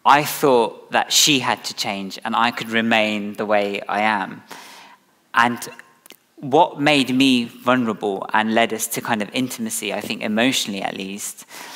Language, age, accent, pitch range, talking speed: English, 20-39, British, 105-130 Hz, 165 wpm